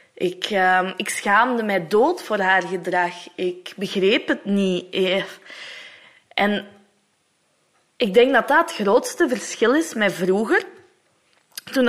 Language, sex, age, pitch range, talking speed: Dutch, female, 20-39, 180-220 Hz, 125 wpm